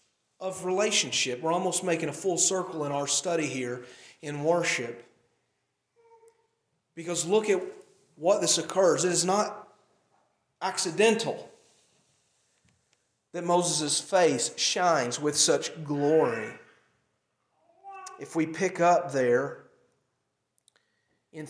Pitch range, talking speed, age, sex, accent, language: 160-215 Hz, 105 wpm, 40-59, male, American, English